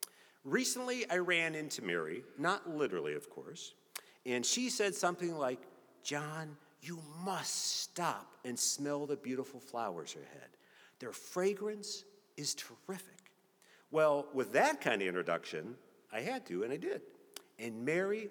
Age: 50-69